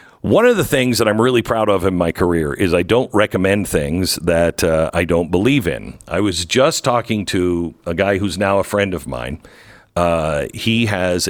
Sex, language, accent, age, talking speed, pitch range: male, English, American, 50-69, 205 wpm, 80-100 Hz